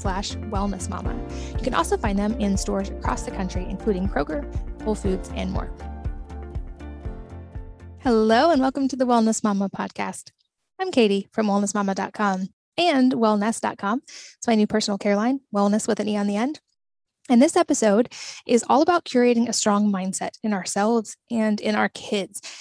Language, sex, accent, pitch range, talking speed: English, female, American, 200-245 Hz, 165 wpm